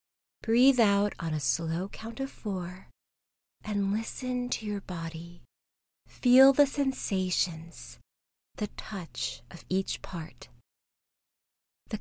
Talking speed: 110 wpm